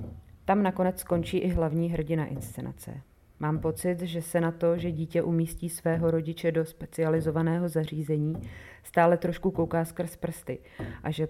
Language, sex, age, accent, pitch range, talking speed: Czech, female, 30-49, native, 150-170 Hz, 150 wpm